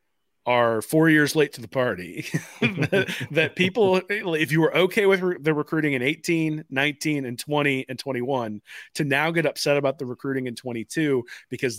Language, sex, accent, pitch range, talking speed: English, male, American, 120-150 Hz, 175 wpm